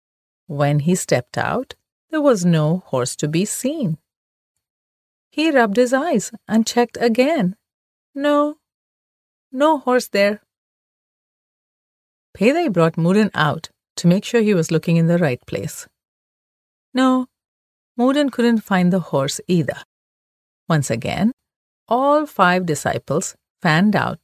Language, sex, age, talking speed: English, female, 40-59, 125 wpm